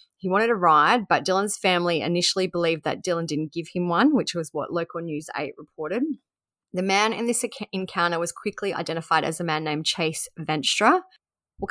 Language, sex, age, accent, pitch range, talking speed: English, female, 20-39, Australian, 165-195 Hz, 190 wpm